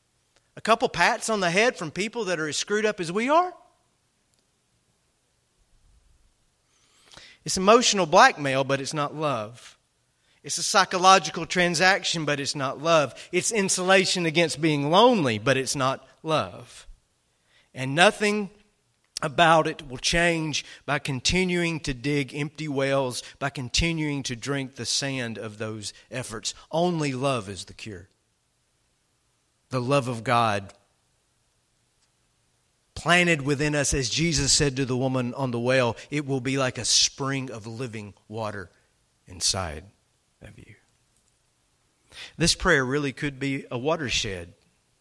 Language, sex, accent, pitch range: English, male, American, 130-175 Hz